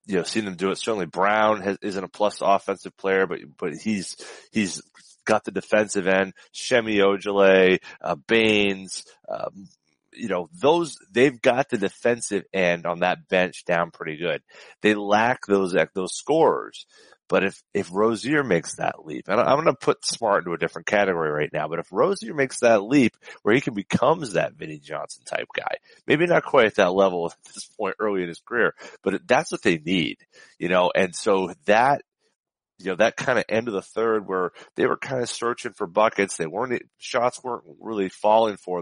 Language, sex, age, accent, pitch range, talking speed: English, male, 30-49, American, 95-125 Hz, 195 wpm